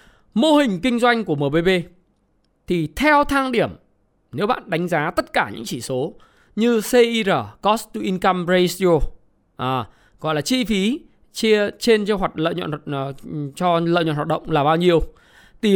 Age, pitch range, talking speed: 20-39, 170-240 Hz, 175 wpm